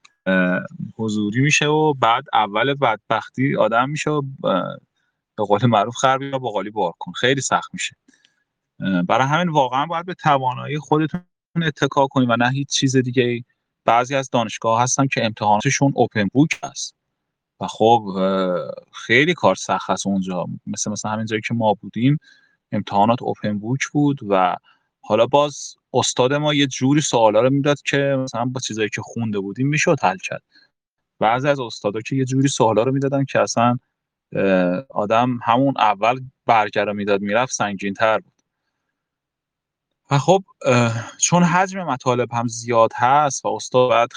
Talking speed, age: 150 wpm, 30-49